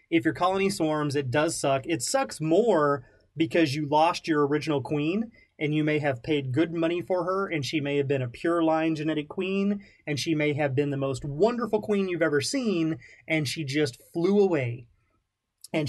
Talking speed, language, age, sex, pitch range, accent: 200 wpm, English, 30-49, male, 135-170 Hz, American